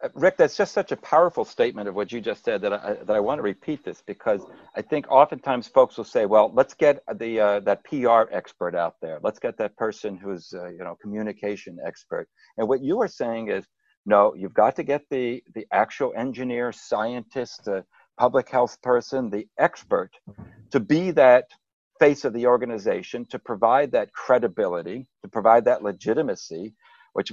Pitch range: 105-145 Hz